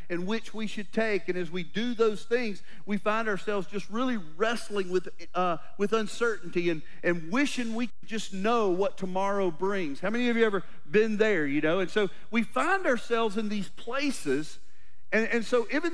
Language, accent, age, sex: English, American, 40-59, male